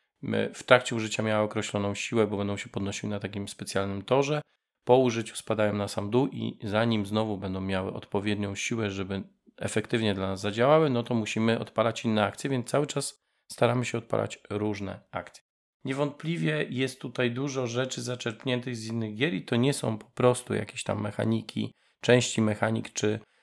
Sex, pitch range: male, 110-125 Hz